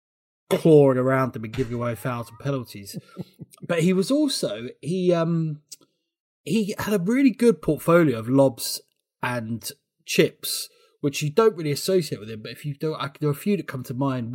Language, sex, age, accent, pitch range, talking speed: English, male, 30-49, British, 125-155 Hz, 190 wpm